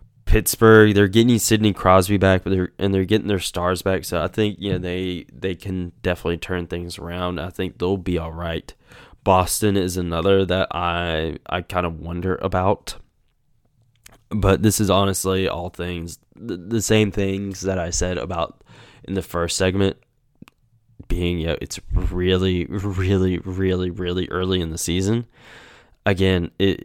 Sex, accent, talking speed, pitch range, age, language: male, American, 165 wpm, 90-105 Hz, 10-29, English